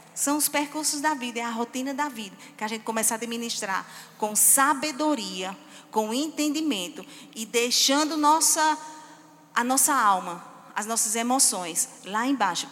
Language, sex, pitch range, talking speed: Portuguese, female, 215-260 Hz, 140 wpm